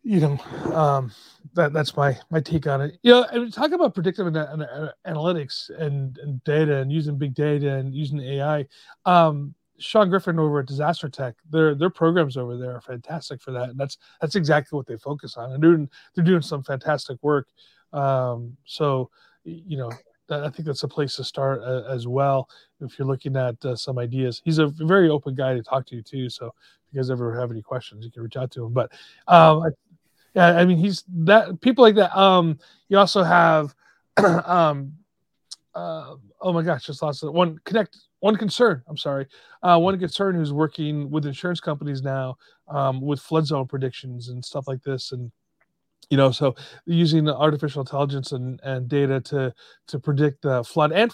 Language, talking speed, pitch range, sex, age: English, 200 wpm, 130-165 Hz, male, 30-49